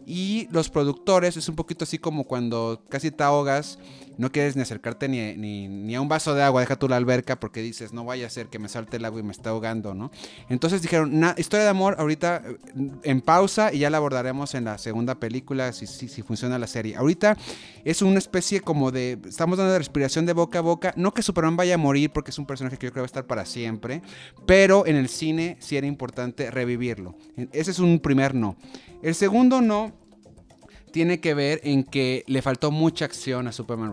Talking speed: 225 wpm